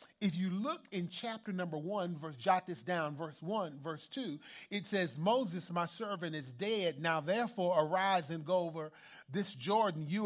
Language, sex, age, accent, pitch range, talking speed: English, male, 40-59, American, 180-260 Hz, 175 wpm